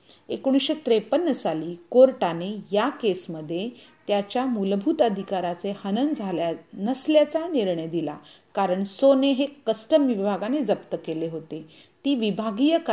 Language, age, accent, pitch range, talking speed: Hindi, 40-59, native, 175-255 Hz, 50 wpm